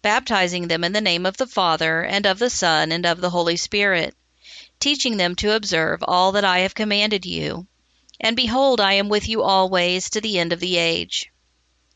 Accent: American